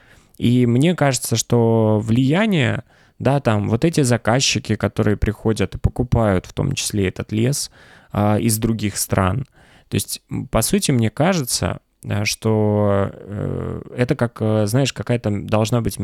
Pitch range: 100-120 Hz